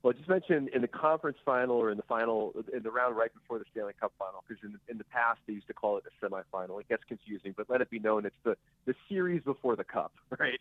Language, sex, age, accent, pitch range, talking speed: English, male, 40-59, American, 100-125 Hz, 275 wpm